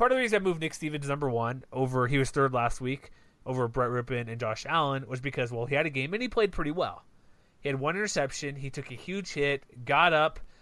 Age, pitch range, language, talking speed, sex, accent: 30-49, 130-160 Hz, English, 255 wpm, male, American